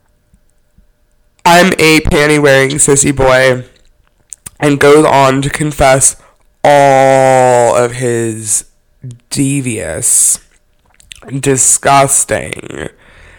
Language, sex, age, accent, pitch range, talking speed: English, male, 20-39, American, 130-165 Hz, 70 wpm